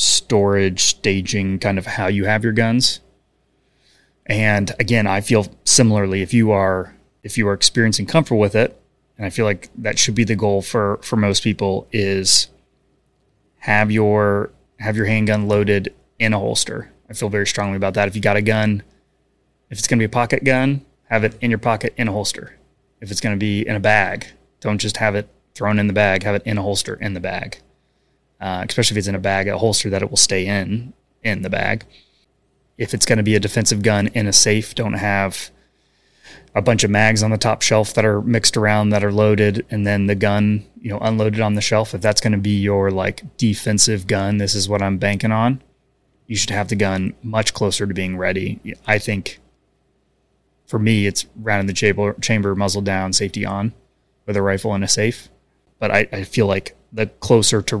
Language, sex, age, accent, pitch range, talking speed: English, male, 20-39, American, 100-110 Hz, 215 wpm